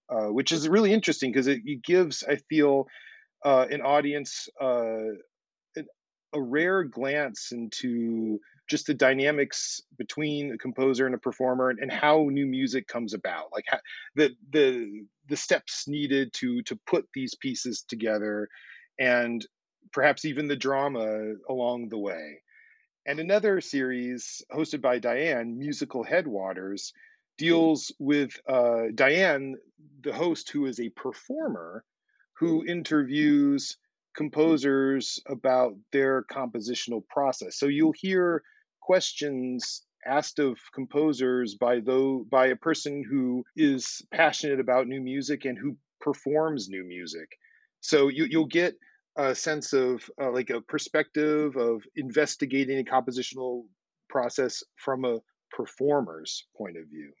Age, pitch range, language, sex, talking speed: 40-59, 125-150 Hz, English, male, 130 wpm